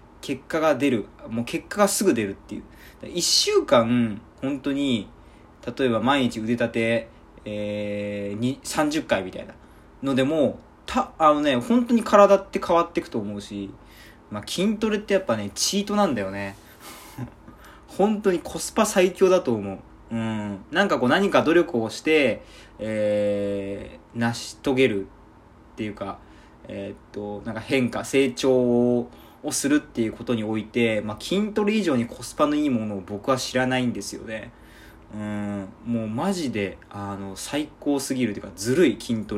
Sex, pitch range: male, 105-140 Hz